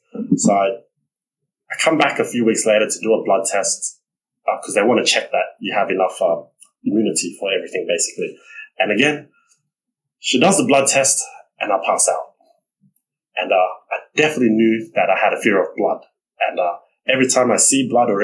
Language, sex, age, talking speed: Vietnamese, male, 20-39, 195 wpm